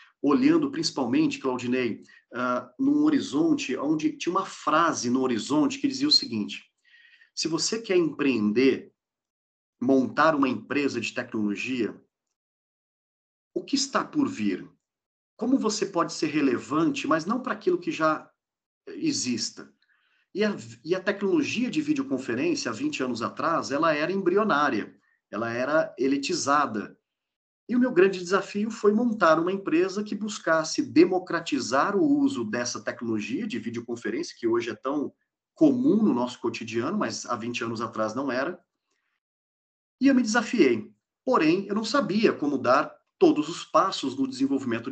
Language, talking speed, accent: Portuguese, 145 wpm, Brazilian